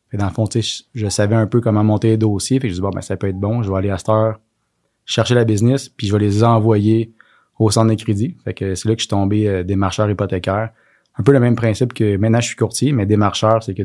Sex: male